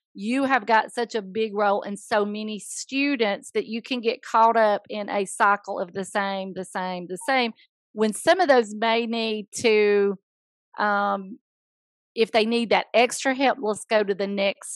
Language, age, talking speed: English, 40-59, 185 wpm